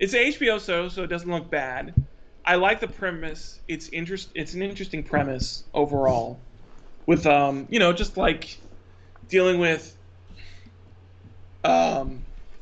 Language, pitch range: English, 145-170 Hz